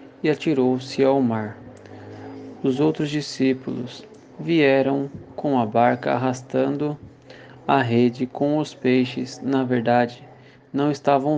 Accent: Brazilian